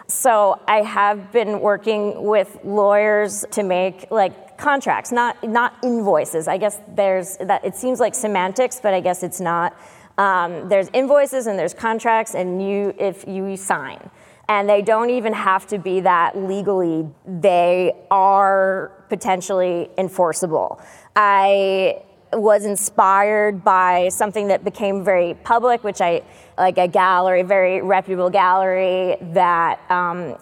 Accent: American